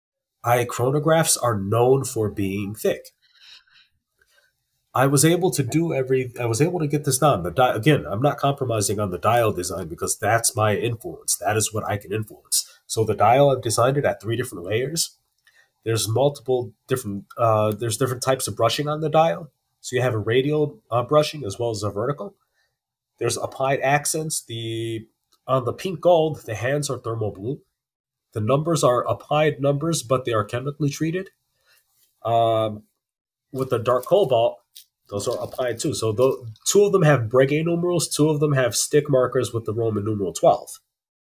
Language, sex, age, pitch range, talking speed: English, male, 30-49, 115-150 Hz, 180 wpm